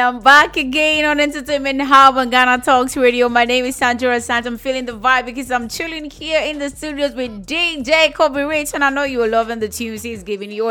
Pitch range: 240-315 Hz